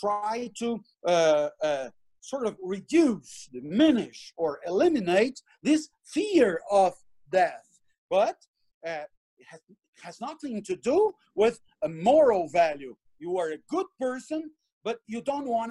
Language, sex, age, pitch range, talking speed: English, male, 50-69, 185-270 Hz, 140 wpm